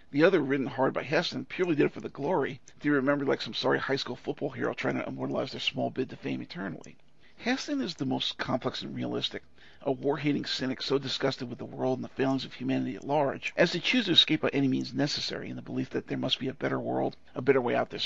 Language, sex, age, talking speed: English, male, 50-69, 255 wpm